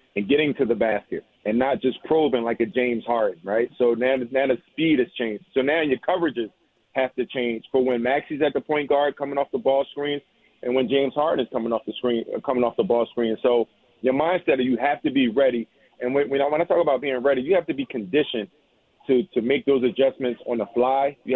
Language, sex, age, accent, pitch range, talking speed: English, male, 40-59, American, 115-140 Hz, 240 wpm